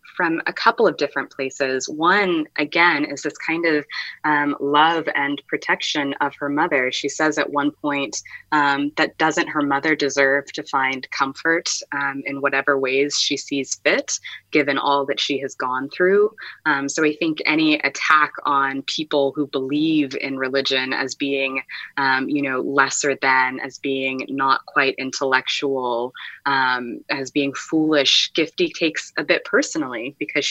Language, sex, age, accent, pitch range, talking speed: English, female, 20-39, American, 135-155 Hz, 160 wpm